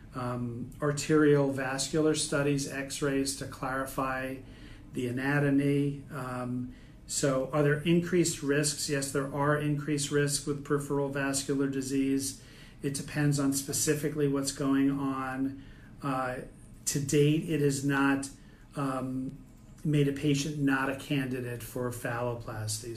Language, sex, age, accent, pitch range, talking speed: English, male, 40-59, American, 125-145 Hz, 120 wpm